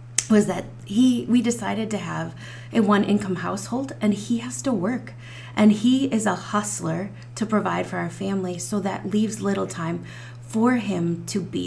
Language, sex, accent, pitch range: English, female, American, 150-205 Hz